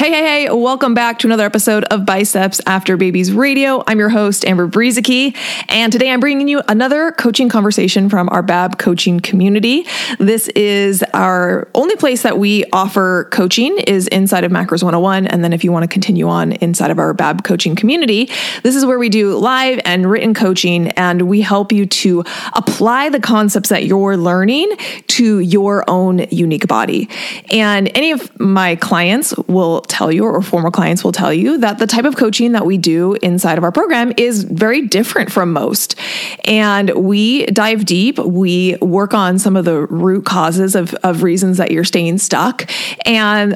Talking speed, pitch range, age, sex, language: 185 wpm, 185-230 Hz, 20-39, female, English